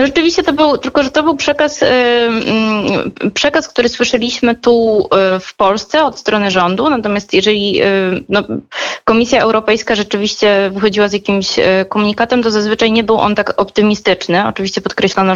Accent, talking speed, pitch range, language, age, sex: native, 165 wpm, 185-235 Hz, Polish, 20-39, female